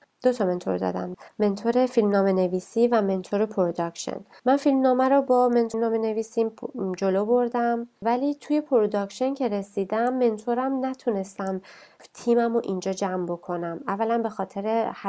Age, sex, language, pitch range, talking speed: 30-49, female, Persian, 185-235 Hz, 135 wpm